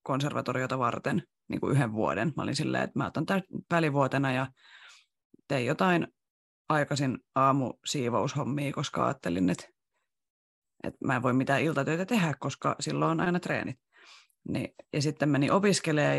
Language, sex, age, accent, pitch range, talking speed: Finnish, female, 30-49, native, 130-155 Hz, 140 wpm